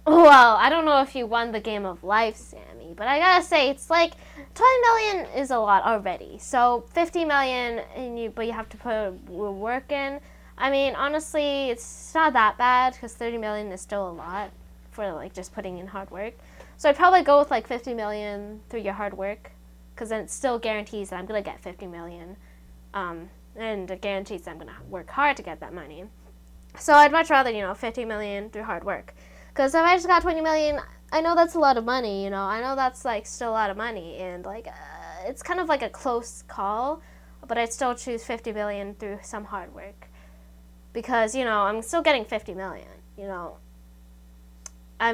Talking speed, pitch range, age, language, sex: 215 wpm, 195-275 Hz, 10-29, English, female